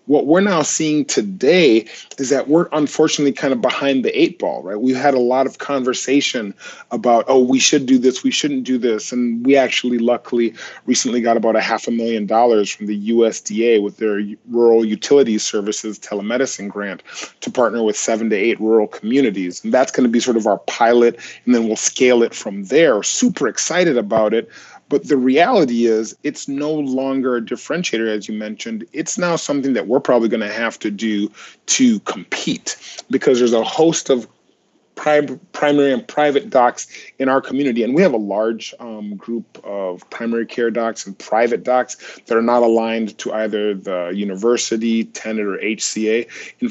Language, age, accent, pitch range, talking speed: English, 30-49, American, 110-140 Hz, 185 wpm